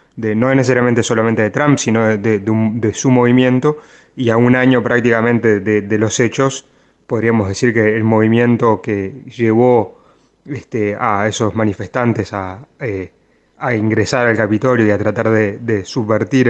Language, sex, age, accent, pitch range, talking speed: Spanish, male, 30-49, Argentinian, 110-125 Hz, 170 wpm